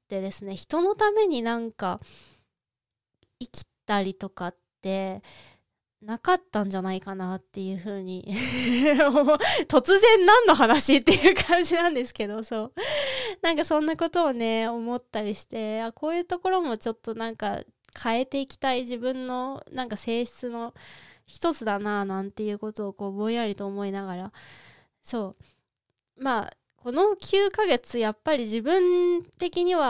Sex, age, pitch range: female, 20-39, 205-285 Hz